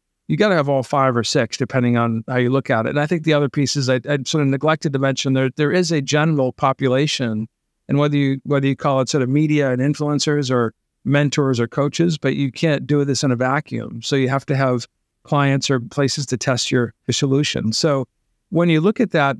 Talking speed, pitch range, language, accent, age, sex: 235 wpm, 130-150 Hz, English, American, 50-69, male